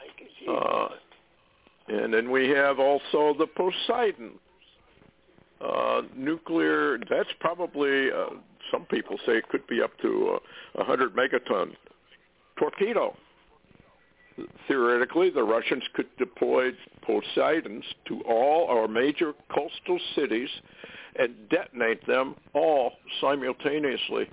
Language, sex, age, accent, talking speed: English, male, 60-79, American, 105 wpm